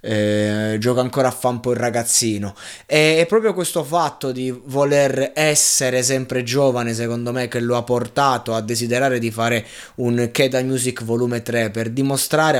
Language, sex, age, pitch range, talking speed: Italian, male, 20-39, 115-140 Hz, 160 wpm